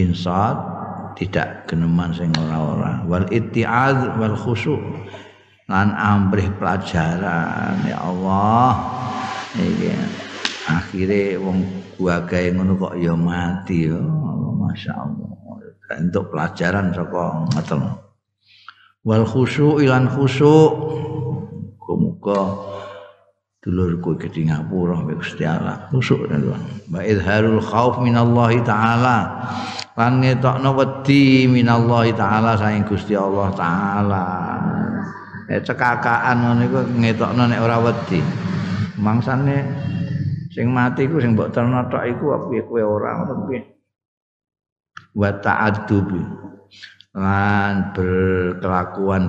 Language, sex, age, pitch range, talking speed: Indonesian, male, 50-69, 95-120 Hz, 90 wpm